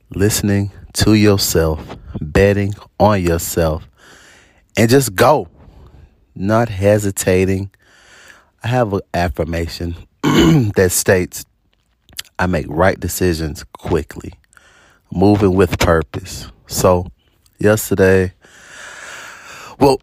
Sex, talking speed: male, 85 wpm